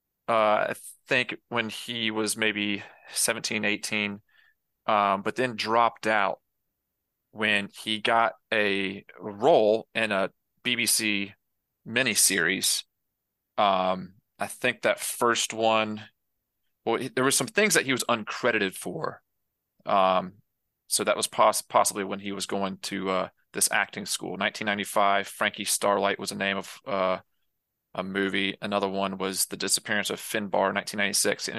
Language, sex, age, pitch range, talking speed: English, male, 30-49, 100-115 Hz, 135 wpm